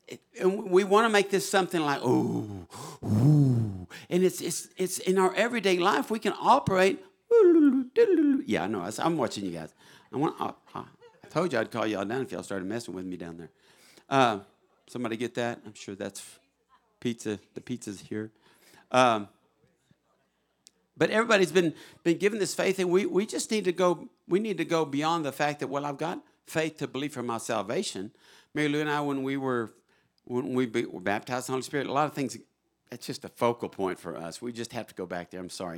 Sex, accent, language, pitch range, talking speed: male, American, English, 110-170 Hz, 210 wpm